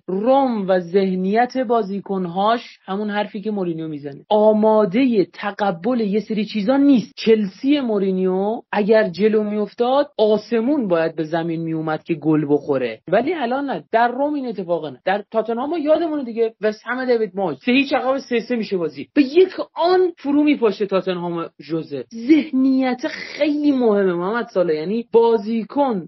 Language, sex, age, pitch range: Persian, male, 30-49, 200-275 Hz